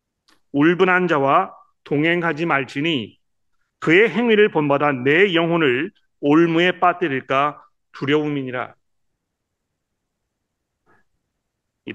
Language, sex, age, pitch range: Korean, male, 40-59, 135-175 Hz